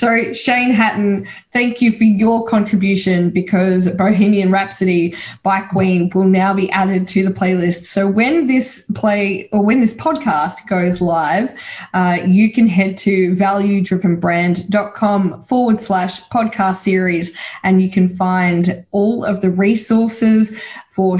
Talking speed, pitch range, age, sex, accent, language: 140 wpm, 180-215 Hz, 10-29, female, Australian, English